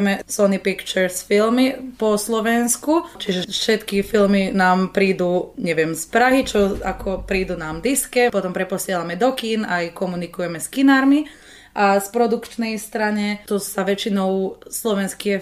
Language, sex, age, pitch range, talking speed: Slovak, female, 20-39, 185-215 Hz, 130 wpm